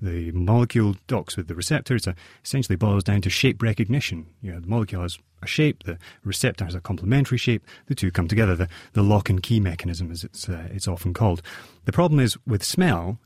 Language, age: English, 30-49